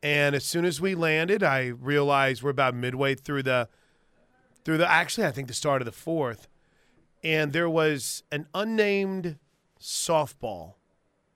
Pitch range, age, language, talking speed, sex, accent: 135-175 Hz, 30-49, English, 155 wpm, male, American